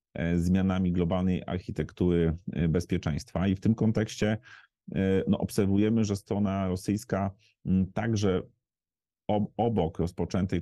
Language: Polish